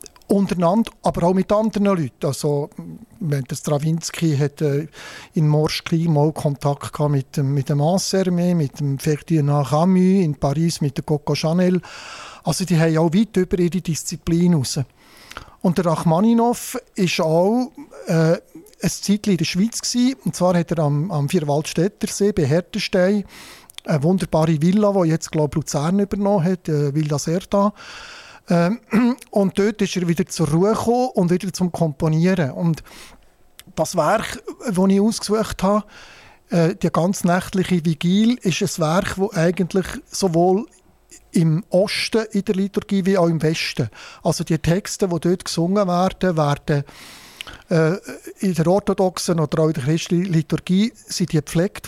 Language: German